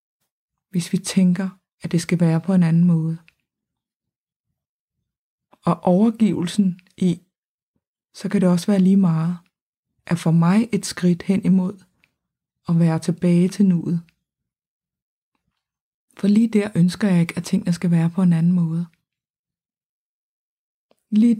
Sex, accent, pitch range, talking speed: female, native, 165-190 Hz, 135 wpm